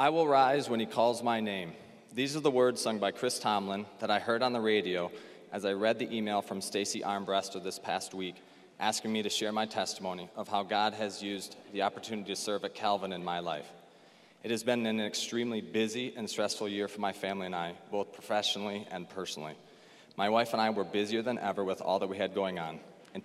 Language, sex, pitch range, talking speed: English, male, 100-115 Hz, 225 wpm